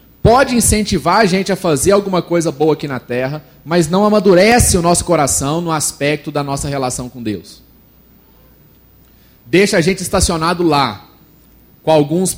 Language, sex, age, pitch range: Portuguese, male, 30-49, 155-195 Hz